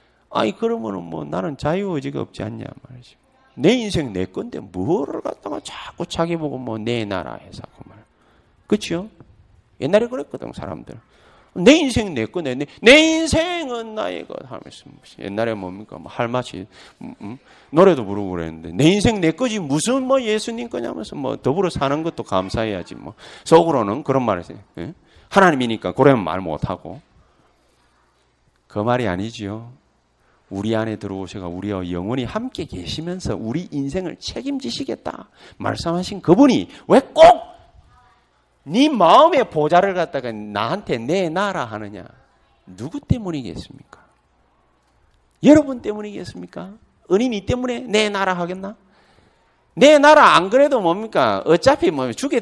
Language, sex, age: Korean, male, 40-59